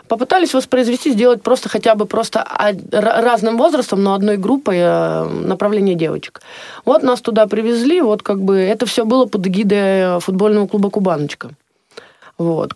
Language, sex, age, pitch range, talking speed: Russian, female, 20-39, 175-235 Hz, 140 wpm